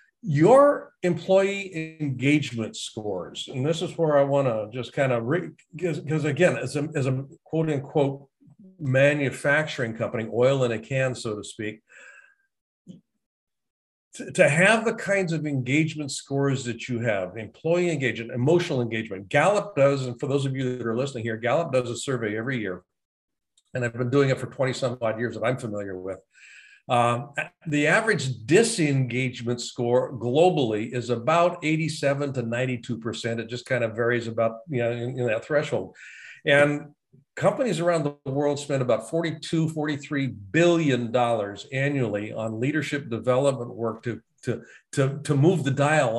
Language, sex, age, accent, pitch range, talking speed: English, male, 50-69, American, 120-155 Hz, 155 wpm